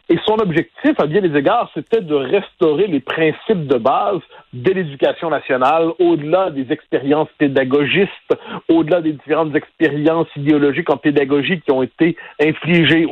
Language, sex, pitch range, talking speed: French, male, 145-200 Hz, 145 wpm